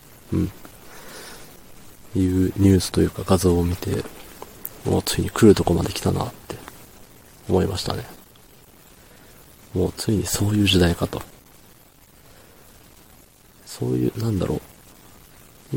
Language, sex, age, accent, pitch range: Japanese, male, 40-59, native, 90-105 Hz